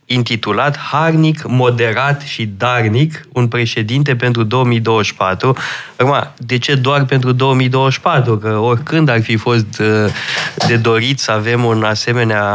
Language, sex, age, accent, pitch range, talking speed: Romanian, male, 20-39, native, 115-155 Hz, 125 wpm